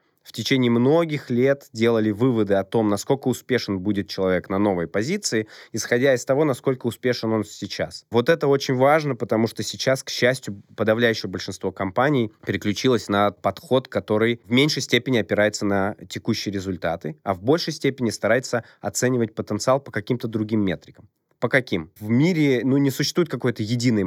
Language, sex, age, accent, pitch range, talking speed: Russian, male, 20-39, native, 105-130 Hz, 160 wpm